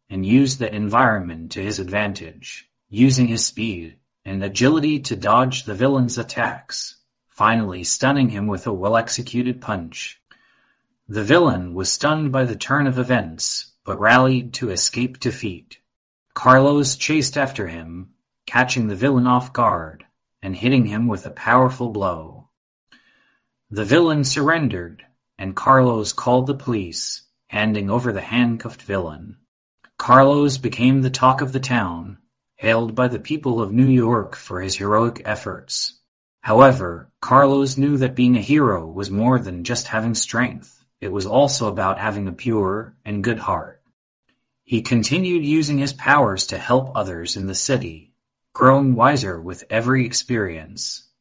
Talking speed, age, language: 145 wpm, 30-49, English